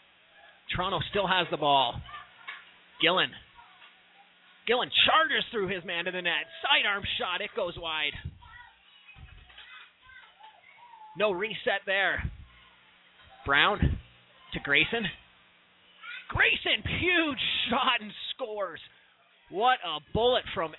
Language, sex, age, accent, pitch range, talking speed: English, male, 30-49, American, 180-220 Hz, 100 wpm